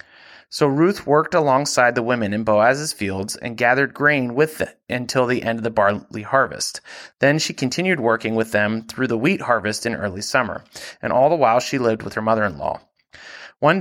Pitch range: 115-145 Hz